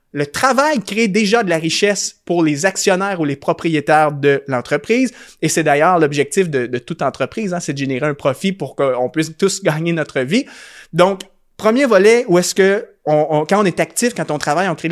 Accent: Canadian